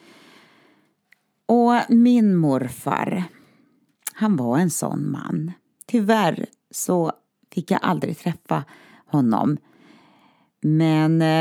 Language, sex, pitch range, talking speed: Swedish, female, 140-205 Hz, 85 wpm